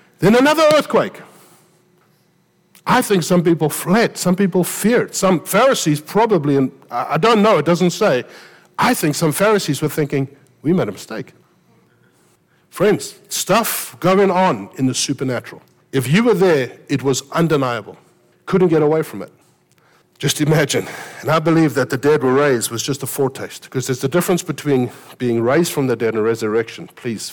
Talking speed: 165 wpm